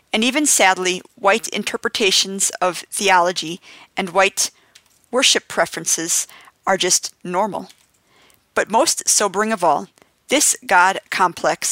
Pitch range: 180-215 Hz